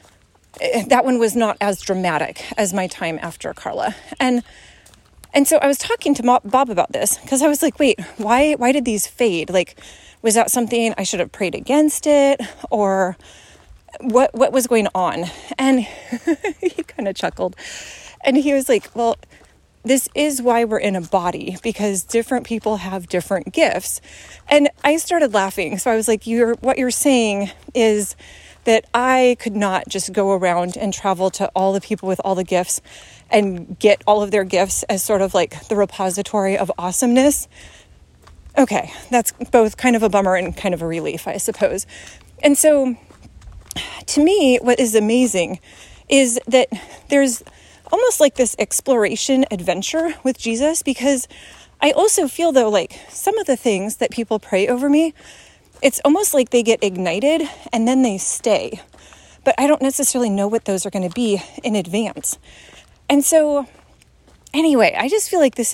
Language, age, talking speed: English, 30-49, 175 wpm